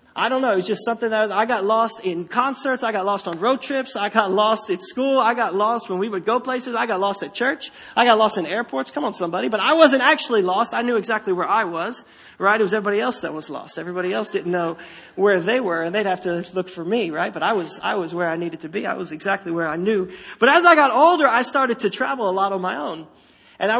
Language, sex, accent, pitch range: English, male, American, 190-245 Hz